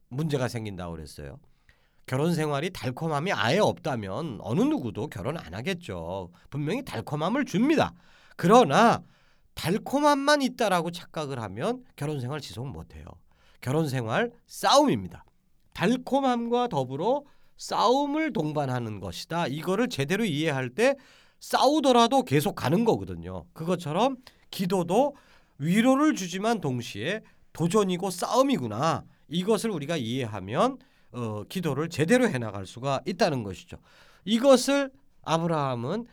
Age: 40-59